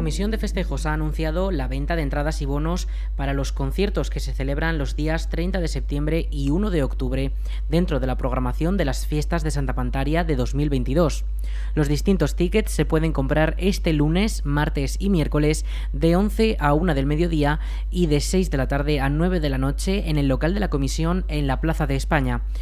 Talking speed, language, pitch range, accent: 205 wpm, Spanish, 140-170 Hz, Spanish